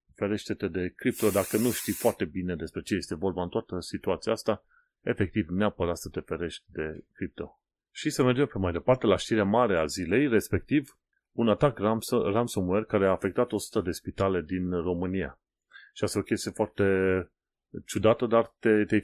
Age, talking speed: 30-49, 175 wpm